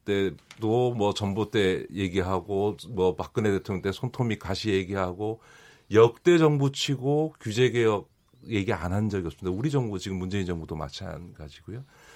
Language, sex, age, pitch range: Korean, male, 40-59, 100-150 Hz